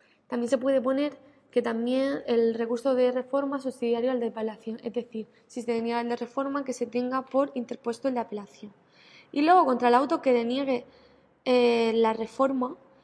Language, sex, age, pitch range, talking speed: Spanish, female, 20-39, 235-270 Hz, 190 wpm